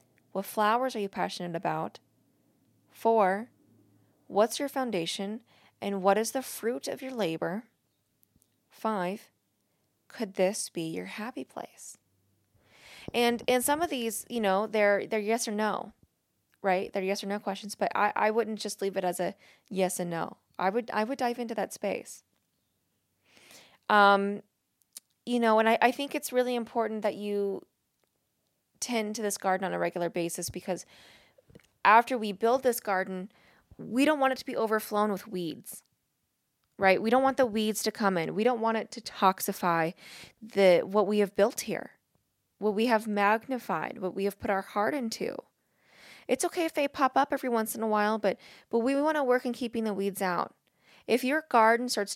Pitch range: 190-235 Hz